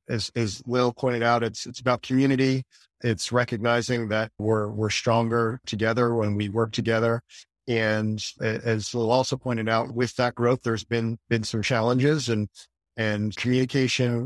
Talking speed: 155 wpm